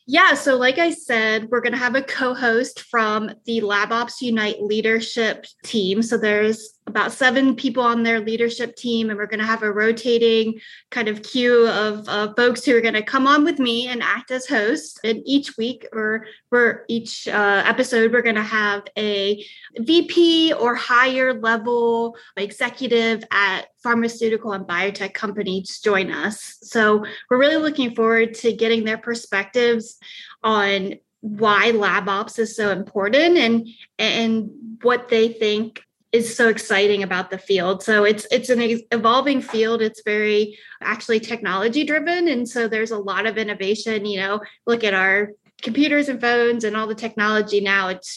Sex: female